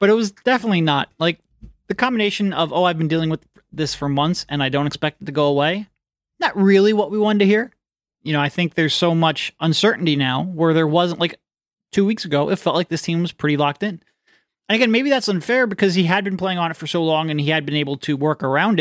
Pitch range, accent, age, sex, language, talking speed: 150-205 Hz, American, 30-49, male, English, 255 wpm